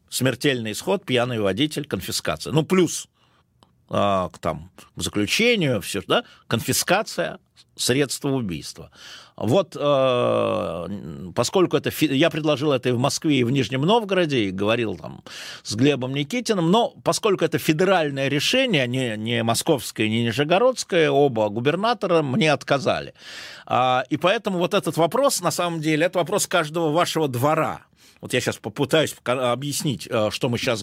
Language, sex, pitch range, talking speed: Russian, male, 120-165 Hz, 140 wpm